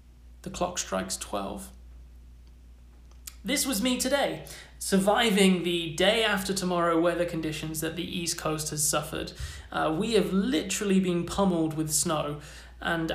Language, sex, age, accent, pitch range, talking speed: English, male, 30-49, British, 155-185 Hz, 135 wpm